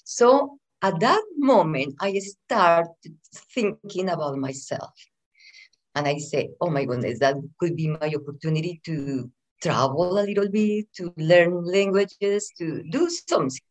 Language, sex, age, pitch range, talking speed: English, female, 50-69, 160-215 Hz, 135 wpm